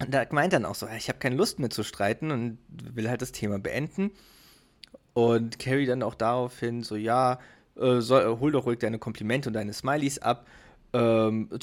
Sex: male